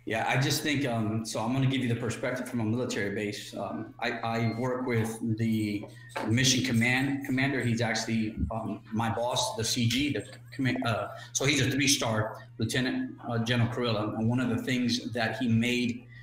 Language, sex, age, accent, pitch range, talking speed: English, male, 30-49, American, 110-125 Hz, 190 wpm